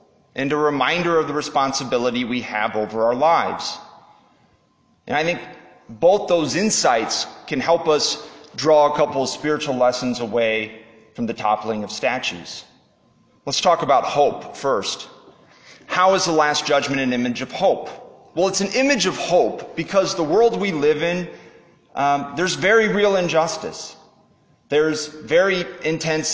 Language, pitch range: English, 125-175 Hz